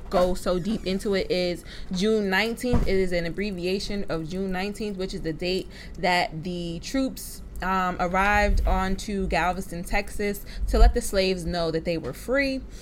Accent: American